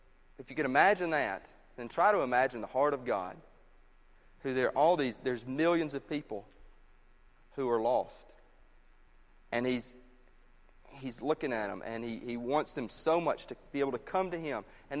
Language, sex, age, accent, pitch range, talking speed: English, male, 30-49, American, 125-165 Hz, 185 wpm